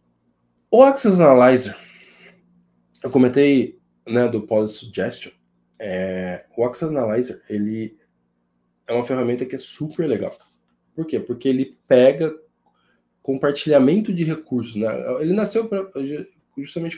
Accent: Brazilian